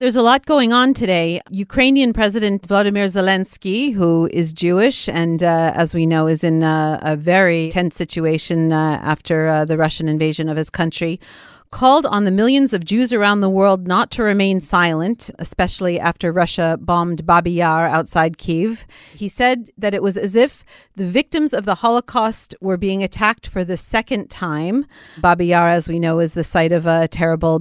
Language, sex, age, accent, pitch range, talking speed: English, female, 40-59, American, 175-220 Hz, 185 wpm